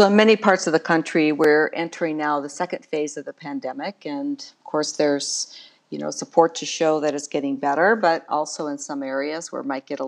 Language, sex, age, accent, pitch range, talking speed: English, female, 50-69, American, 145-195 Hz, 230 wpm